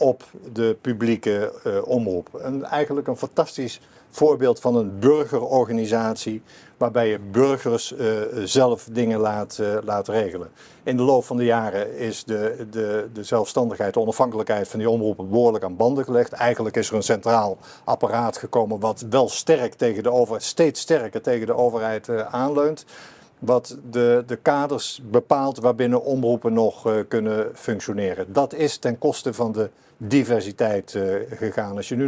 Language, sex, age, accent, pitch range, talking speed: Dutch, male, 50-69, Dutch, 115-135 Hz, 160 wpm